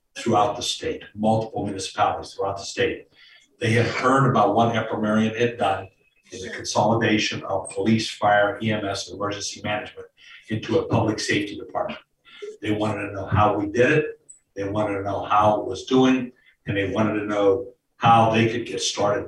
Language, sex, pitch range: English, male, 105-125 Hz